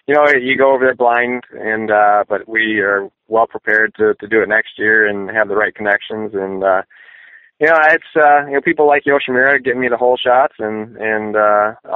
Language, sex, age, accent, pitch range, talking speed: English, male, 20-39, American, 105-120 Hz, 220 wpm